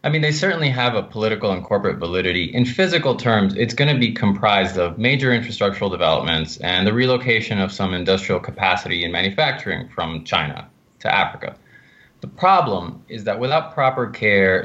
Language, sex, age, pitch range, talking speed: English, male, 20-39, 100-125 Hz, 175 wpm